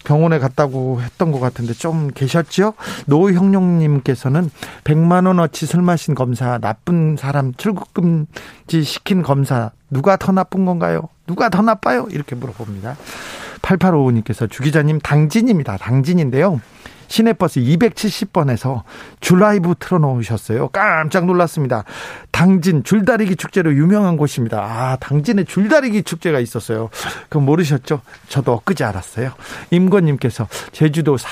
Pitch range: 125-165 Hz